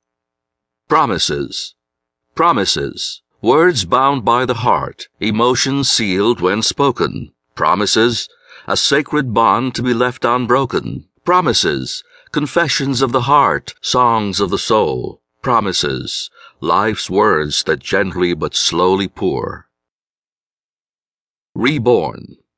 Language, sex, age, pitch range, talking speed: English, male, 60-79, 95-125 Hz, 100 wpm